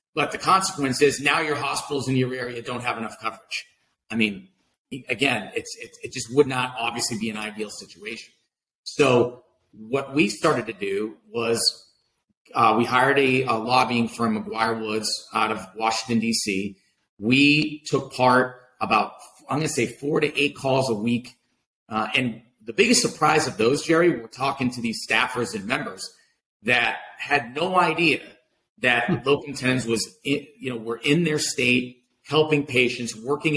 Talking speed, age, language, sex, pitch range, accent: 165 wpm, 40-59, English, male, 115-140 Hz, American